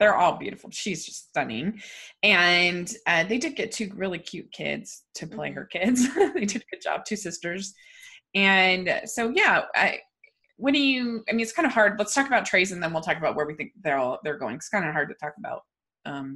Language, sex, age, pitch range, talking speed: English, female, 20-39, 180-255 Hz, 230 wpm